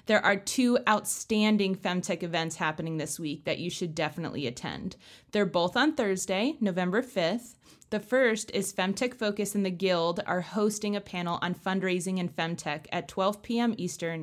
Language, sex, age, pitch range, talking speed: English, female, 20-39, 175-225 Hz, 170 wpm